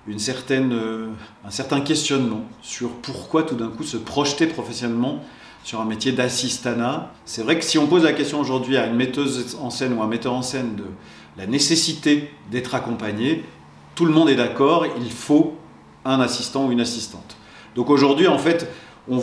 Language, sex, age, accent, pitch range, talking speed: French, male, 40-59, French, 115-145 Hz, 185 wpm